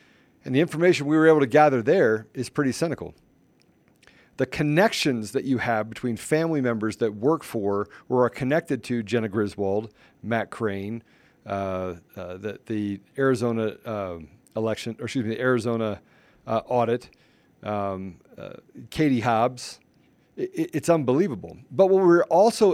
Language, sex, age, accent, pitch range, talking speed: English, male, 40-59, American, 110-150 Hz, 150 wpm